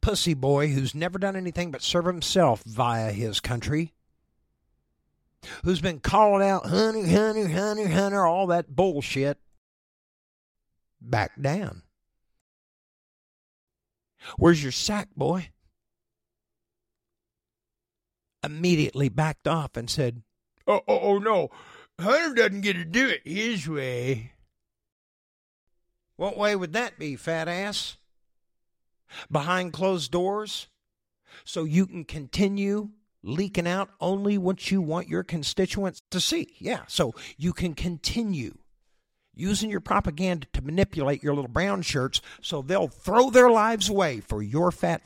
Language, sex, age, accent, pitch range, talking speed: English, male, 50-69, American, 130-195 Hz, 125 wpm